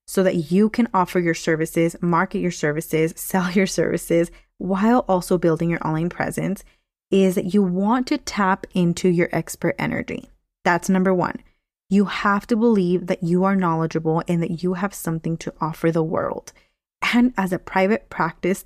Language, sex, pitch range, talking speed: English, female, 170-205 Hz, 175 wpm